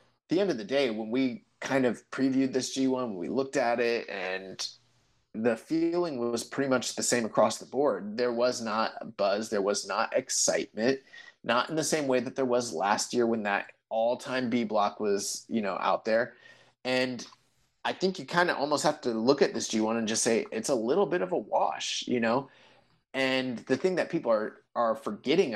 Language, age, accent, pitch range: English, 30-49, American, 110-135 Hz